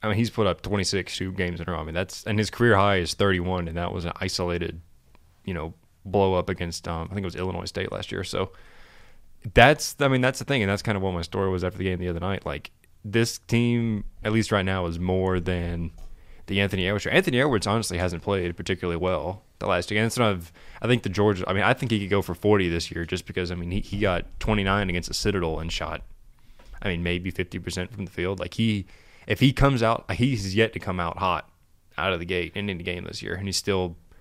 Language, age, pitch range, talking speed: English, 20-39, 90-110 Hz, 255 wpm